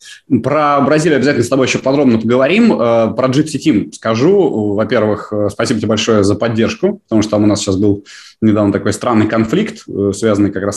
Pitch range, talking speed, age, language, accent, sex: 95-120 Hz, 175 wpm, 20-39, Russian, native, male